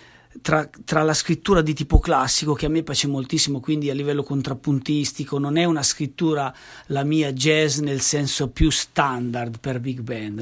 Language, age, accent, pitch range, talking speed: Italian, 40-59, native, 125-155 Hz, 175 wpm